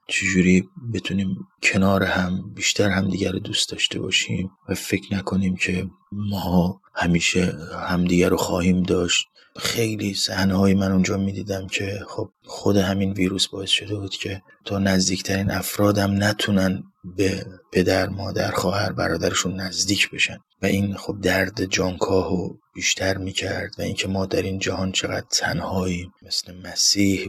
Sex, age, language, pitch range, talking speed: male, 30-49, Persian, 90-95 Hz, 145 wpm